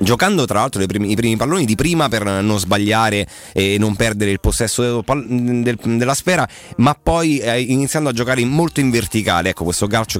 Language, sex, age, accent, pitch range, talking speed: Italian, male, 30-49, native, 95-120 Hz, 170 wpm